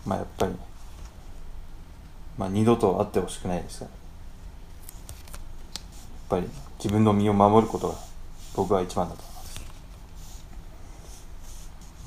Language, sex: Japanese, male